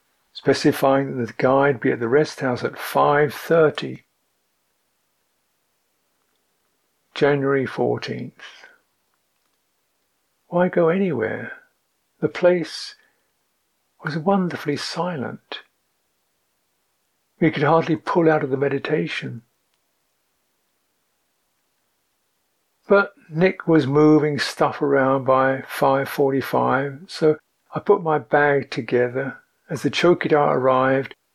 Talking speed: 90 wpm